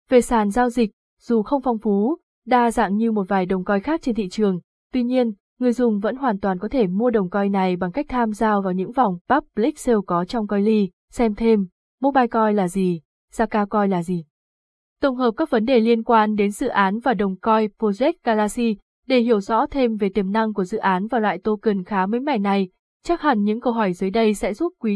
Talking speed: 235 wpm